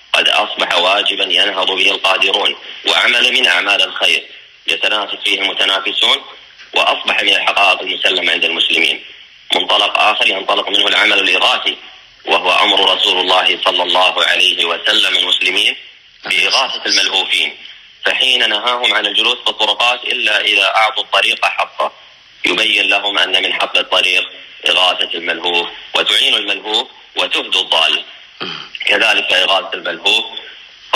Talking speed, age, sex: 120 wpm, 30-49, male